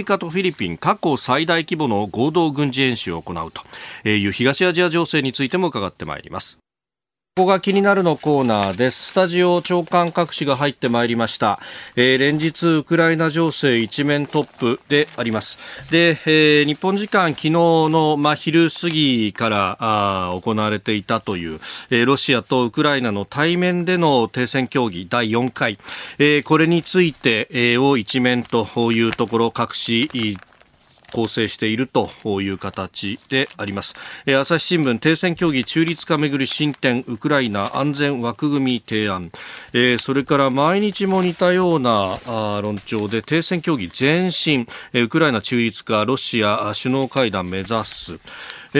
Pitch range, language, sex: 115-165 Hz, Japanese, male